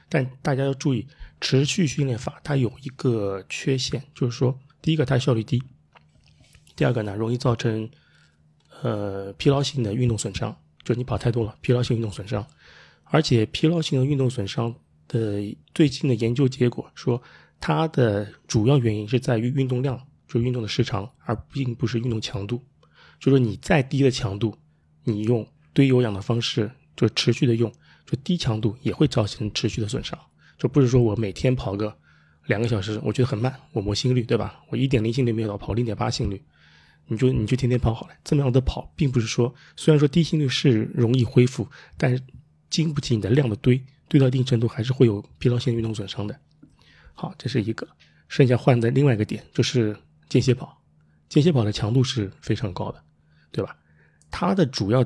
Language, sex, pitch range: Chinese, male, 105-135 Hz